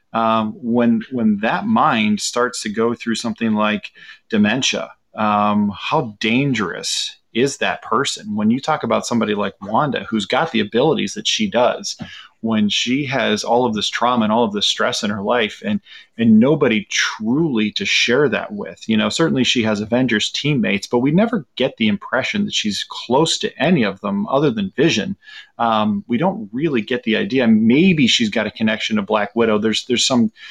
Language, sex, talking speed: English, male, 190 wpm